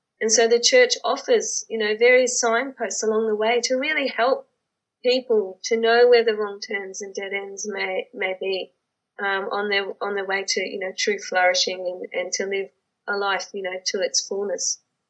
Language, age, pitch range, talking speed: English, 20-39, 215-295 Hz, 200 wpm